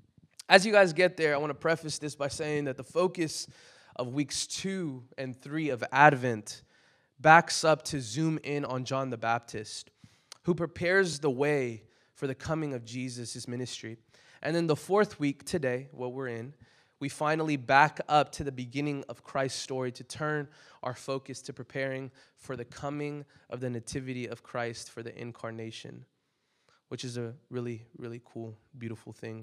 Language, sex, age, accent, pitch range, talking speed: English, male, 20-39, American, 125-155 Hz, 175 wpm